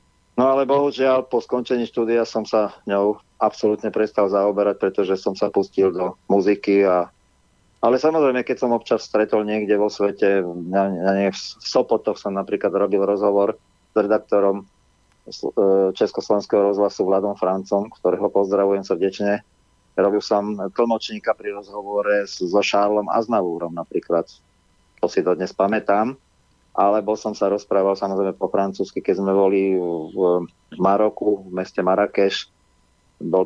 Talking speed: 135 wpm